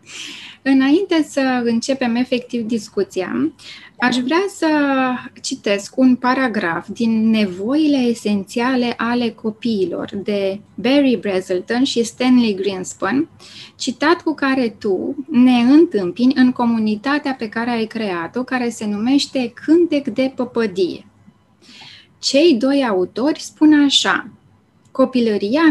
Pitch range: 220-275 Hz